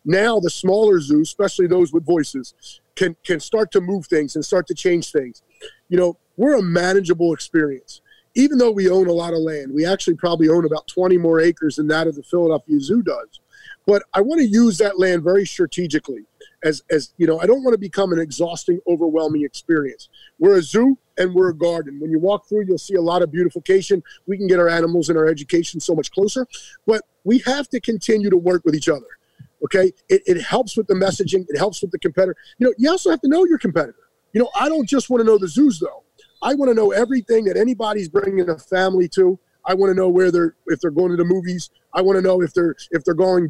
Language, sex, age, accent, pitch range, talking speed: English, male, 30-49, American, 170-230 Hz, 235 wpm